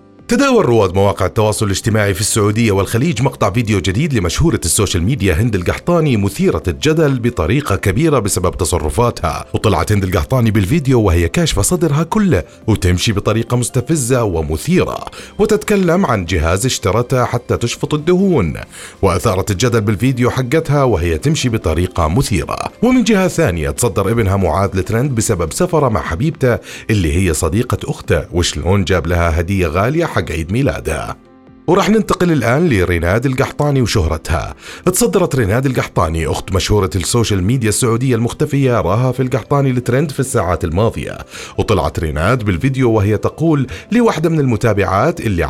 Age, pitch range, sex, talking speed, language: 30-49, 95-135 Hz, male, 135 wpm, Arabic